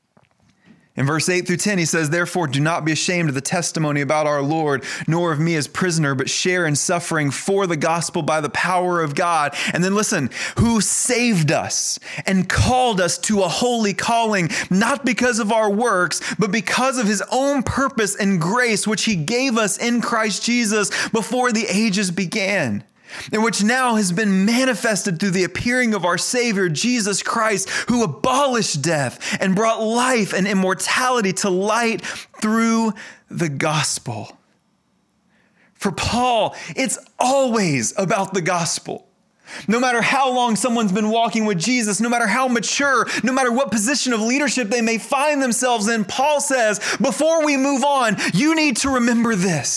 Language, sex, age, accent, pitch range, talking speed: English, male, 30-49, American, 180-245 Hz, 170 wpm